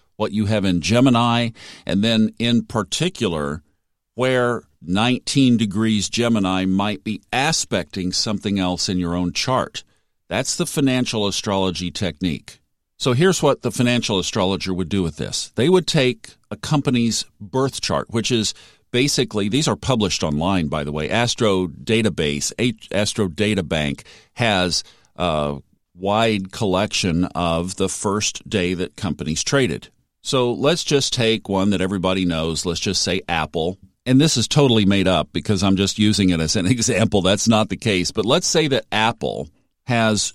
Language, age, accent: English, 50-69, American